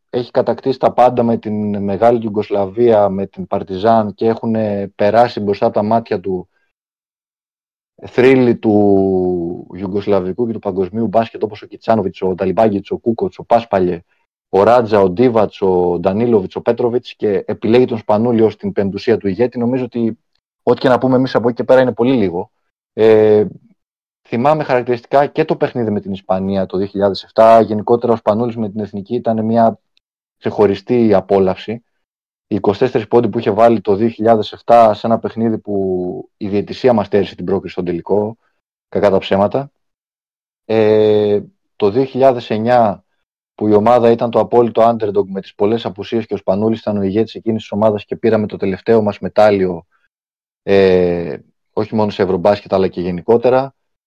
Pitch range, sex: 100-120 Hz, male